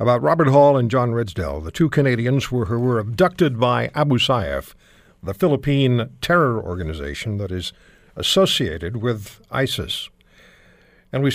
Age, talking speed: 60-79, 135 wpm